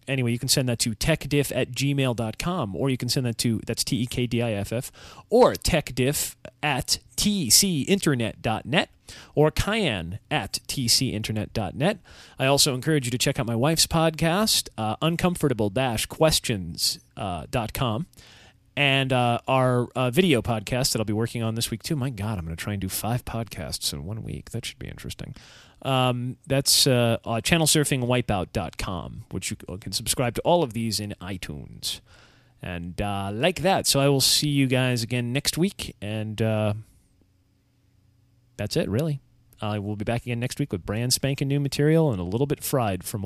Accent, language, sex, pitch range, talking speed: American, English, male, 110-145 Hz, 170 wpm